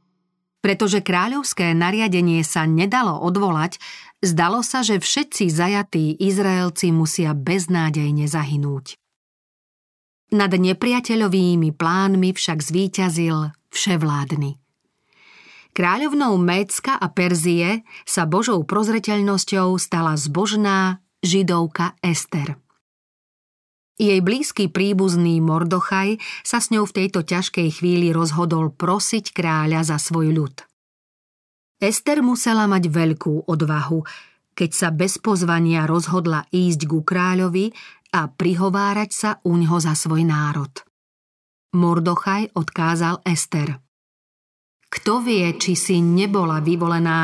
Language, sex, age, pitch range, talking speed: Slovak, female, 40-59, 165-195 Hz, 100 wpm